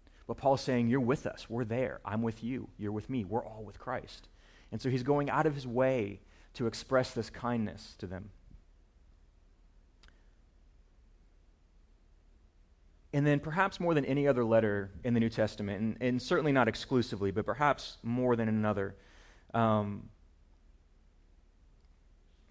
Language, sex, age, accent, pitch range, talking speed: English, male, 30-49, American, 95-125 Hz, 145 wpm